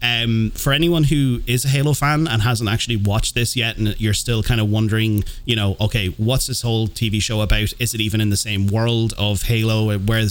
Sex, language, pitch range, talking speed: male, English, 105-125 Hz, 225 wpm